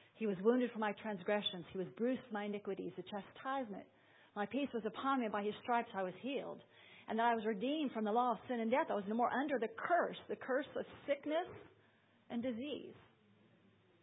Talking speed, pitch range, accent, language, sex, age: 210 wpm, 205-240 Hz, American, English, female, 50-69